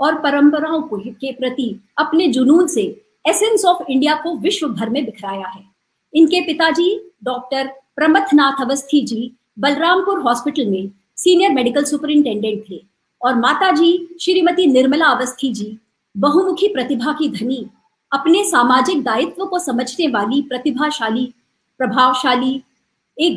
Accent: native